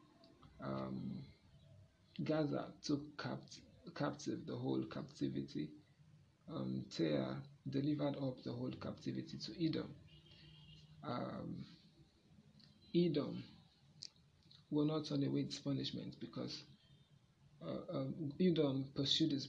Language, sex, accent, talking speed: English, male, Nigerian, 90 wpm